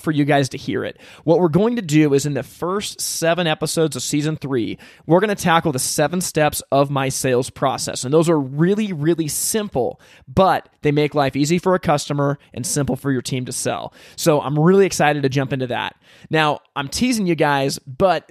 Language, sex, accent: English, male, American